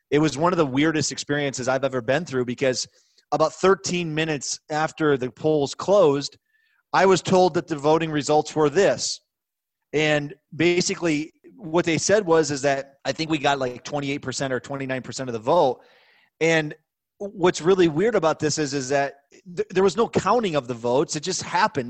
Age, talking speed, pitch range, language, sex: 30-49, 180 wpm, 135-175 Hz, English, male